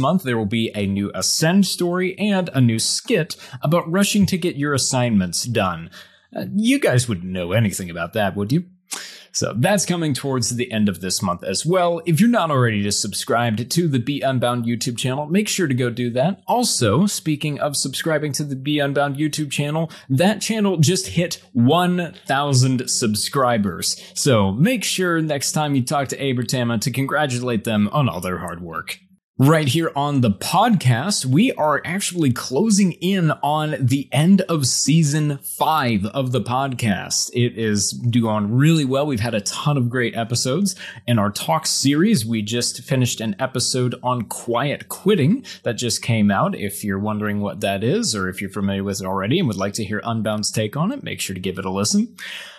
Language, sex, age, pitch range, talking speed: English, male, 30-49, 110-160 Hz, 190 wpm